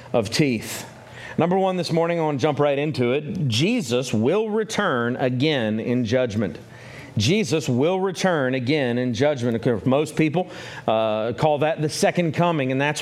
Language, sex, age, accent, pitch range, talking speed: English, male, 40-59, American, 130-175 Hz, 160 wpm